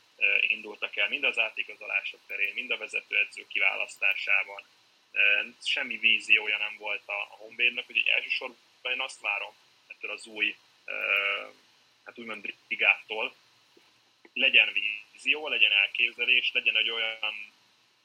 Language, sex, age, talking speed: Hungarian, male, 20-39, 115 wpm